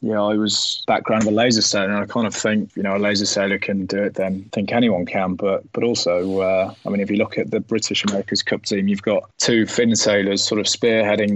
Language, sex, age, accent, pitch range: Chinese, male, 20-39, British, 100-110 Hz